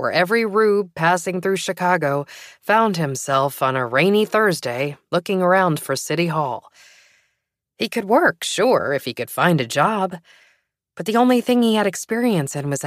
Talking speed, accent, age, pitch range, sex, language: 170 wpm, American, 20-39, 150-215 Hz, female, English